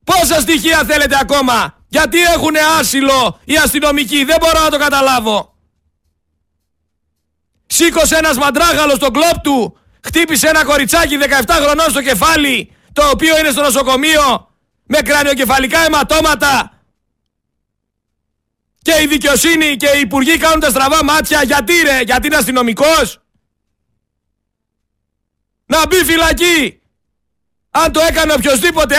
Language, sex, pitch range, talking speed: Greek, male, 275-315 Hz, 120 wpm